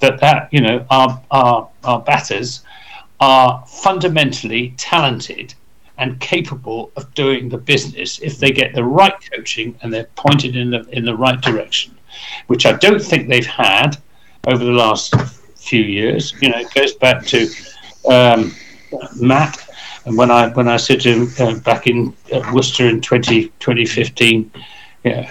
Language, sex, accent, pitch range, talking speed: English, male, British, 120-140 Hz, 160 wpm